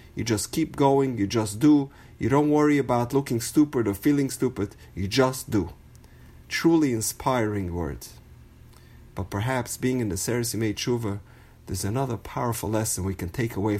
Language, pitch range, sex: English, 100-140 Hz, male